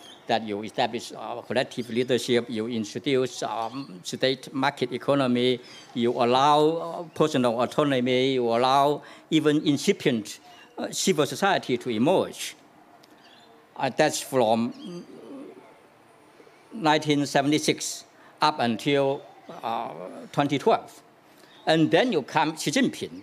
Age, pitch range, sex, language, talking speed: 60-79, 125-175 Hz, male, English, 110 wpm